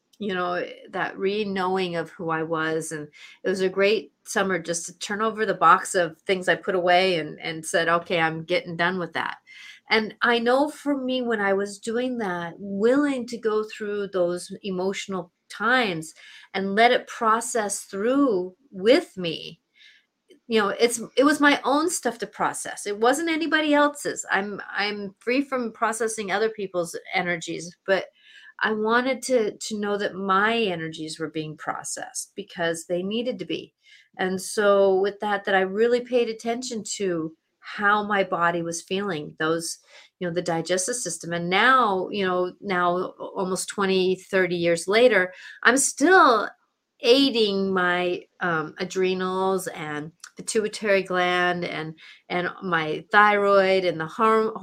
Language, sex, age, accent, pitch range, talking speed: English, female, 30-49, American, 180-230 Hz, 160 wpm